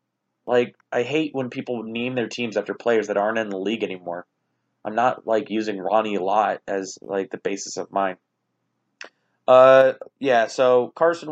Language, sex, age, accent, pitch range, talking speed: English, male, 30-49, American, 100-125 Hz, 170 wpm